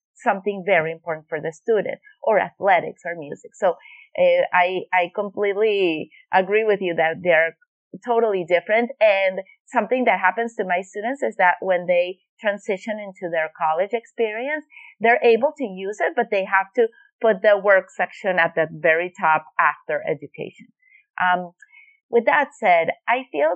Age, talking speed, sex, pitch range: 30-49, 160 wpm, female, 180-245 Hz